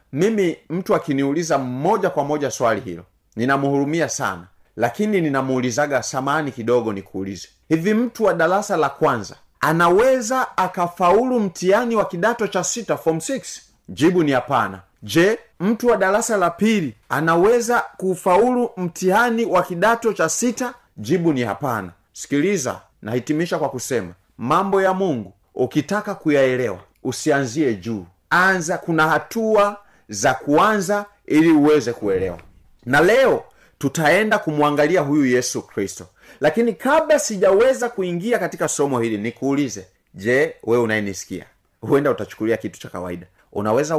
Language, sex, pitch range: Swahili, male, 120-190 Hz